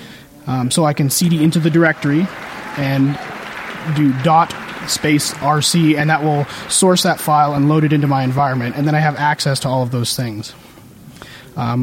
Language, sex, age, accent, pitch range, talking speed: English, male, 30-49, American, 120-145 Hz, 185 wpm